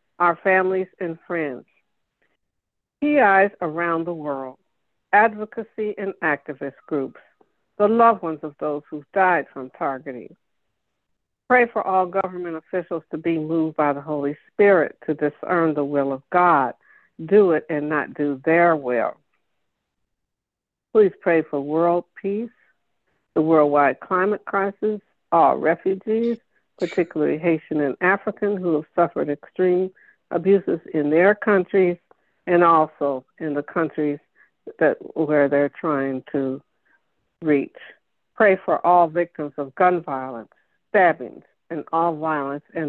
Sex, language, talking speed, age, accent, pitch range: female, English, 125 wpm, 60-79, American, 150-190 Hz